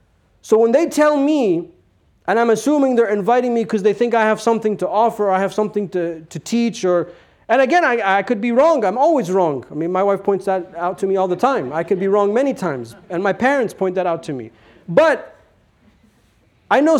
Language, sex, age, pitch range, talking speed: English, male, 40-59, 190-235 Hz, 235 wpm